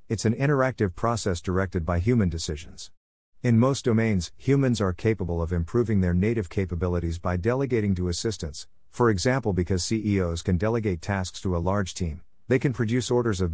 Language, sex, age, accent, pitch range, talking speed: English, male, 50-69, American, 90-115 Hz, 175 wpm